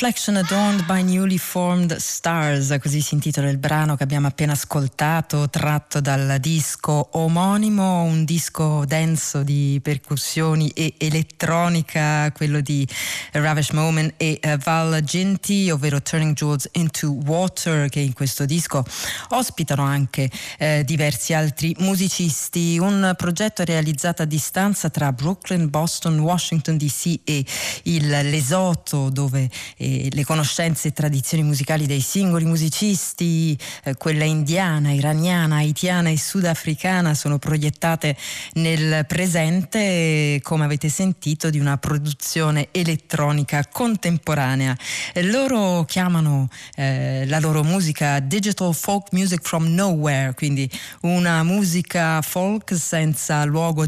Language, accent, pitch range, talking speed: Italian, native, 145-170 Hz, 120 wpm